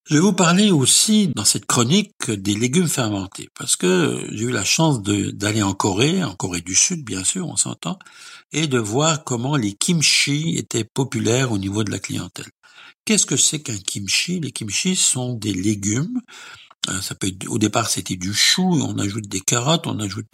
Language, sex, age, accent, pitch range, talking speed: French, male, 60-79, French, 105-145 Hz, 185 wpm